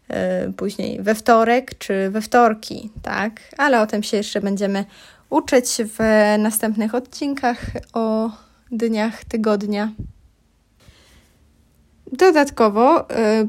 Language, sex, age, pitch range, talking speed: Polish, female, 10-29, 210-245 Hz, 95 wpm